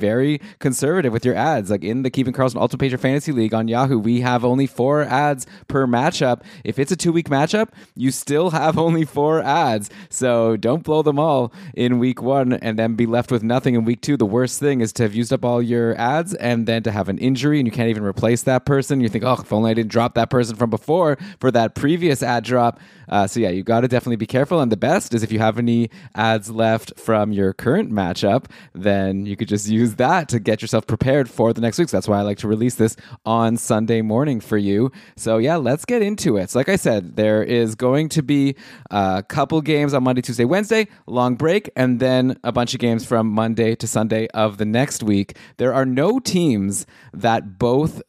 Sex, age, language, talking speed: male, 20-39, English, 230 wpm